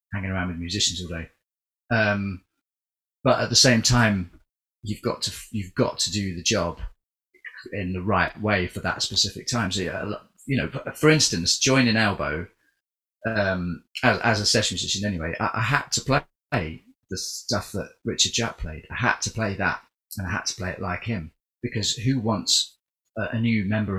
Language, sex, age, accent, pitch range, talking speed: English, male, 30-49, British, 90-120 Hz, 185 wpm